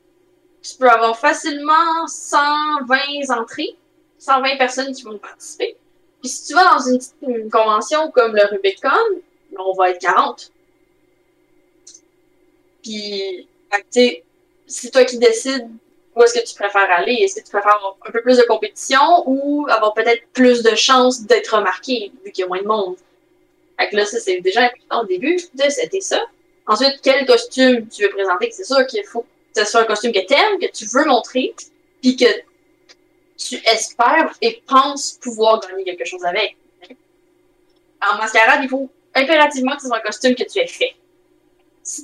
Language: French